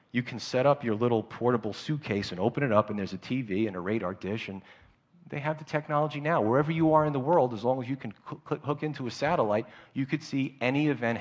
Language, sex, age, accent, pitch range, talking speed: English, male, 40-59, American, 105-140 Hz, 245 wpm